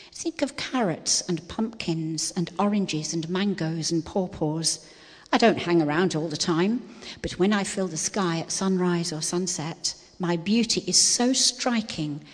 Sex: female